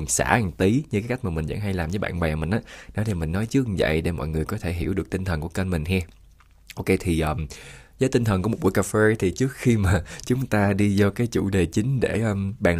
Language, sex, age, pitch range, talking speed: Vietnamese, male, 20-39, 85-110 Hz, 285 wpm